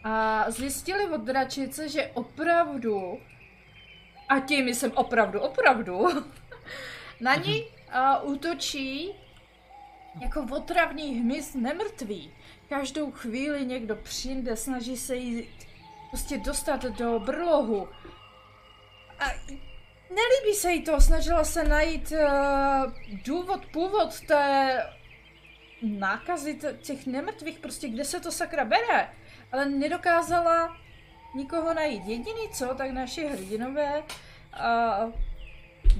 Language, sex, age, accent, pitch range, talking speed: Czech, female, 20-39, native, 220-315 Hz, 100 wpm